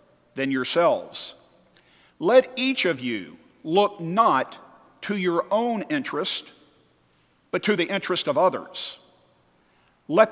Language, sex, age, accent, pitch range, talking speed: English, male, 50-69, American, 165-235 Hz, 110 wpm